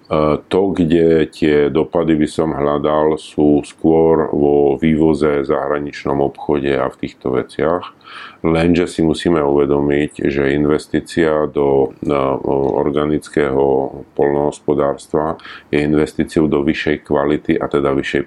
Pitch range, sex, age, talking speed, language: 70-80 Hz, male, 40-59, 115 wpm, Slovak